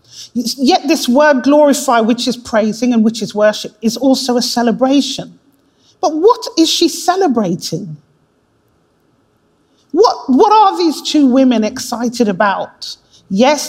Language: English